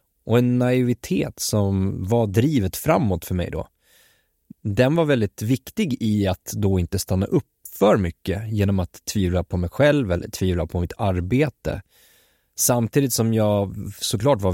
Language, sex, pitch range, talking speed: Swedish, male, 95-120 Hz, 155 wpm